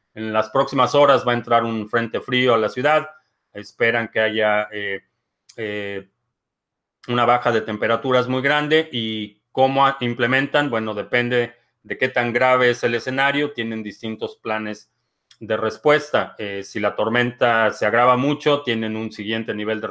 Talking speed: 160 wpm